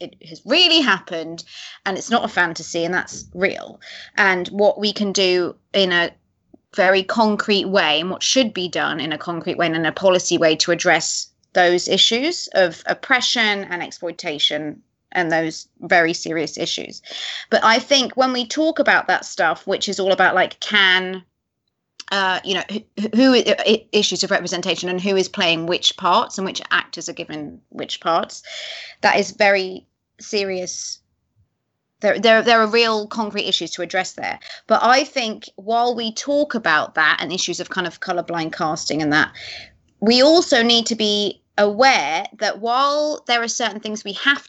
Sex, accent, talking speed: female, British, 175 wpm